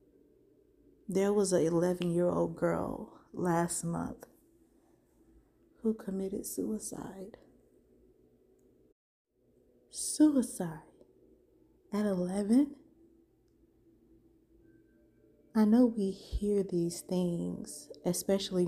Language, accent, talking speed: English, American, 65 wpm